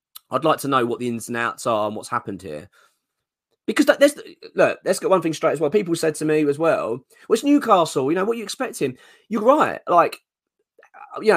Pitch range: 135-185 Hz